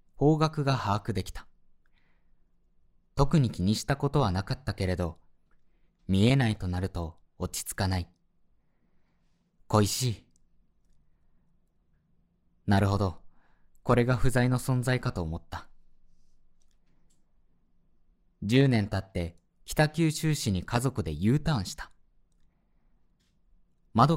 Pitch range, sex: 95-135 Hz, male